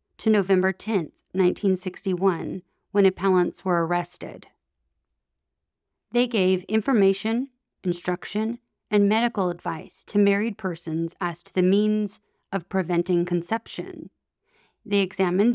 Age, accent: 40-59, American